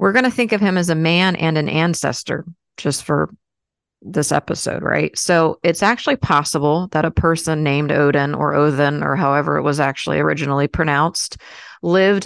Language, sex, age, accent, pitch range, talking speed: English, female, 30-49, American, 145-175 Hz, 175 wpm